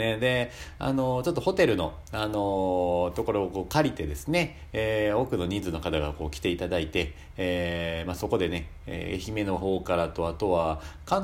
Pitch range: 85-120 Hz